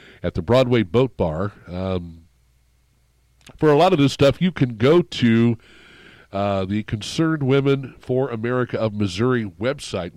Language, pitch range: English, 100-130 Hz